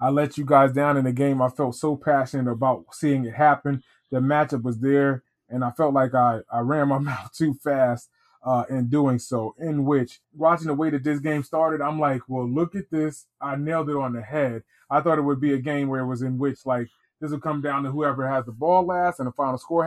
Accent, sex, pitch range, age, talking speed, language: American, male, 135-170 Hz, 20-39, 250 wpm, English